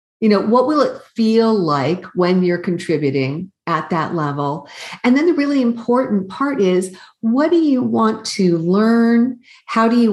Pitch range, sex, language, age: 175-235 Hz, female, English, 50-69